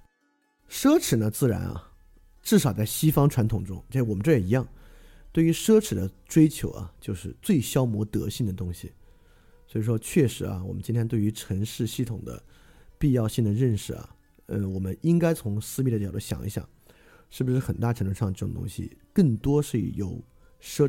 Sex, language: male, Chinese